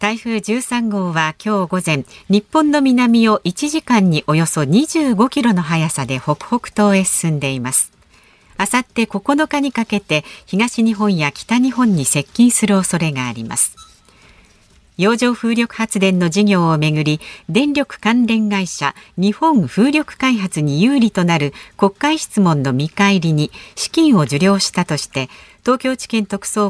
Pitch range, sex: 160-240 Hz, female